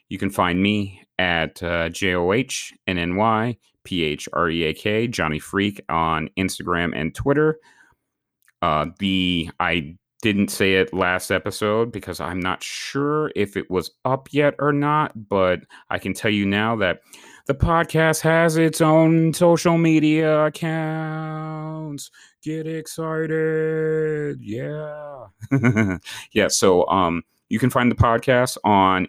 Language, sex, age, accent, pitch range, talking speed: English, male, 30-49, American, 85-125 Hz, 120 wpm